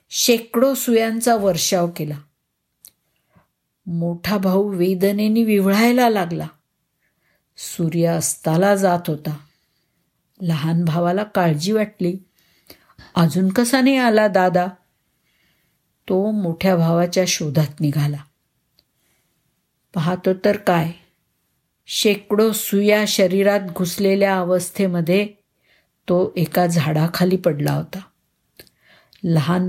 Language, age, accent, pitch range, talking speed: Marathi, 50-69, native, 165-200 Hz, 85 wpm